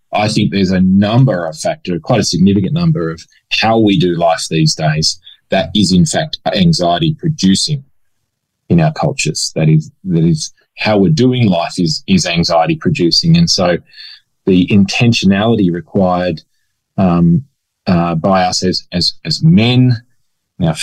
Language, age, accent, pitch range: English, 20-39, Australian, 95-140 Hz